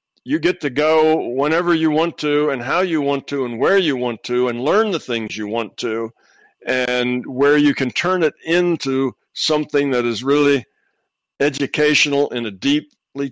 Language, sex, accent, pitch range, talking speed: English, male, American, 115-145 Hz, 180 wpm